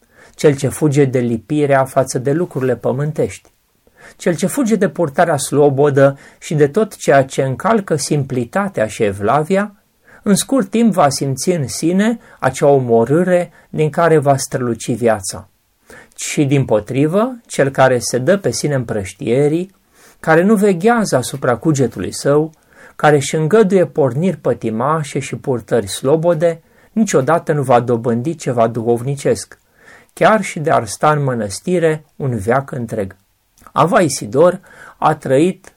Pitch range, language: 125-175 Hz, Romanian